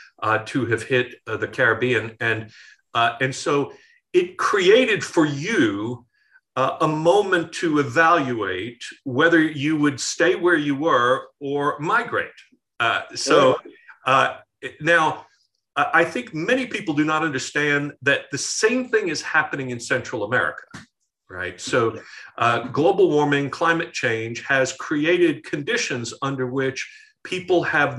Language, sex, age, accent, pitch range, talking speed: English, male, 50-69, American, 130-185 Hz, 135 wpm